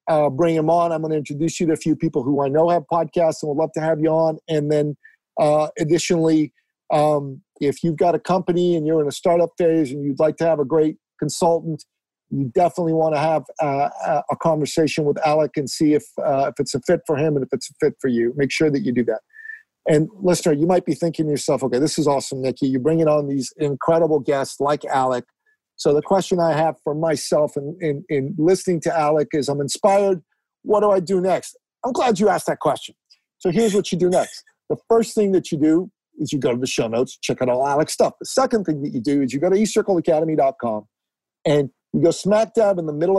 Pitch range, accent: 145-175 Hz, American